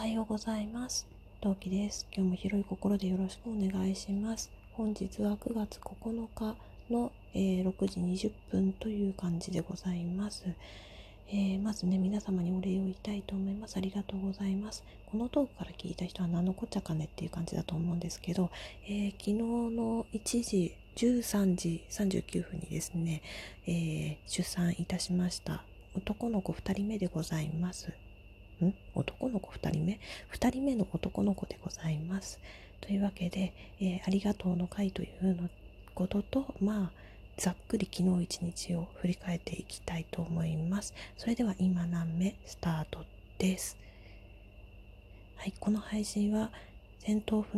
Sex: female